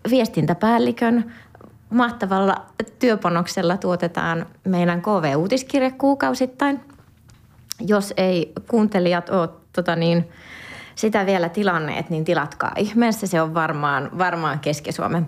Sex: female